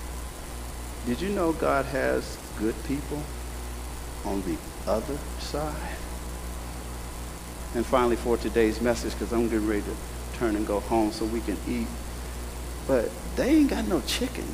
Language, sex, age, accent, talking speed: English, male, 50-69, American, 145 wpm